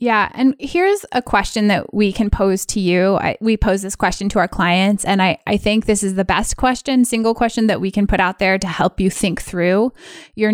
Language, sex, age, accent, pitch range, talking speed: English, female, 20-39, American, 180-220 Hz, 235 wpm